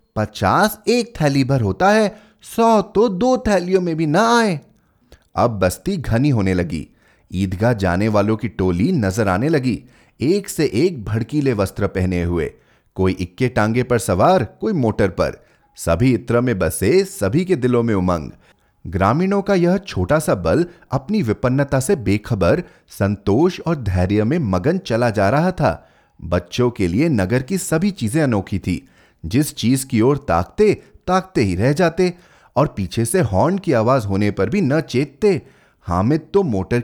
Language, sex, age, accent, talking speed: Hindi, male, 30-49, native, 165 wpm